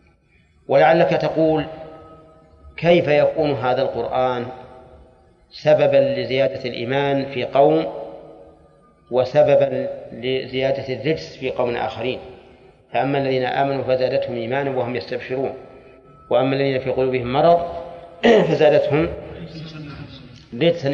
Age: 40-59